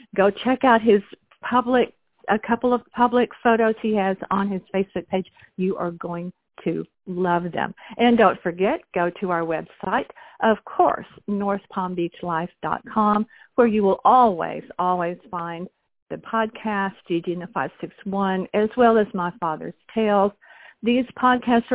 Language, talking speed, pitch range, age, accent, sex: English, 140 wpm, 180-235 Hz, 50-69, American, female